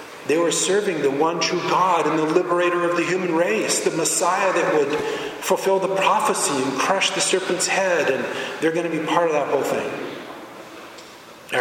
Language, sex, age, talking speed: English, male, 40-59, 190 wpm